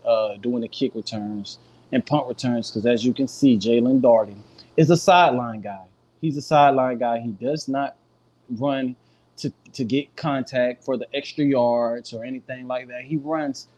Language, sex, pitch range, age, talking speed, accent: English, male, 125-150 Hz, 20-39, 180 wpm, American